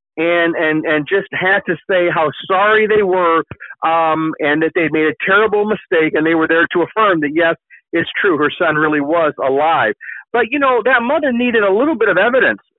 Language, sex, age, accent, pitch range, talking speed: English, male, 50-69, American, 160-210 Hz, 215 wpm